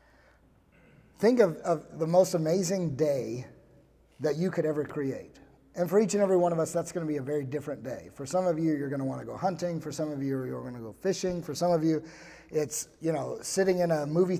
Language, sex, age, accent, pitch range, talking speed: English, male, 30-49, American, 145-180 Hz, 245 wpm